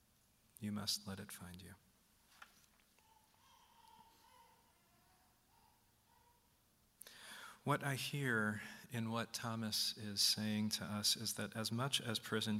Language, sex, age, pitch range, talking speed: English, male, 40-59, 100-115 Hz, 105 wpm